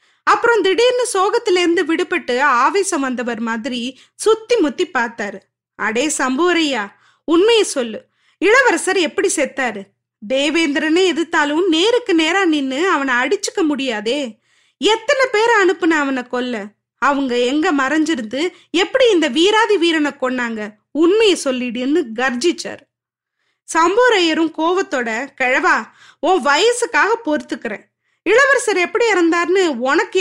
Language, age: Tamil, 20-39